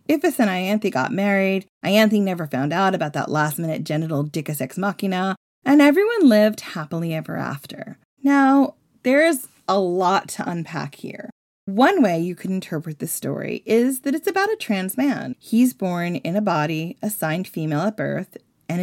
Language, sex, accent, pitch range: English, female, American, 155-220 Hz